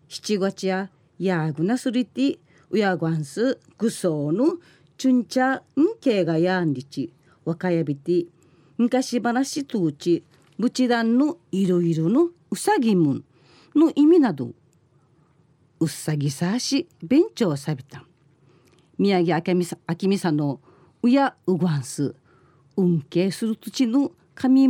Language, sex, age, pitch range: Japanese, female, 40-59, 155-230 Hz